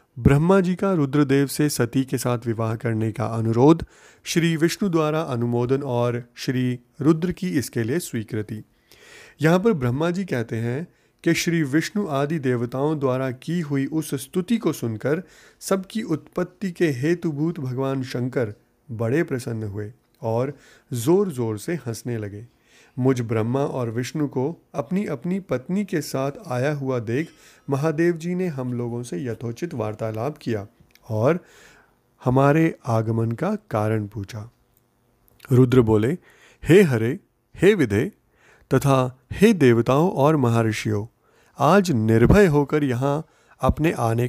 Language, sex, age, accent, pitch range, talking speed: Hindi, male, 30-49, native, 120-165 Hz, 140 wpm